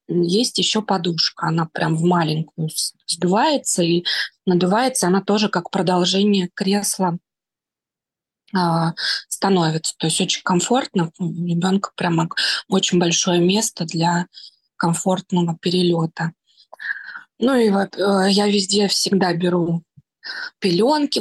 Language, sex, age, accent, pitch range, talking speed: Russian, female, 20-39, native, 170-205 Hz, 110 wpm